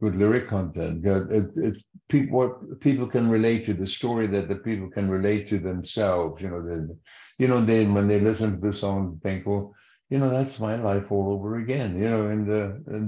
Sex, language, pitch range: male, English, 100-115 Hz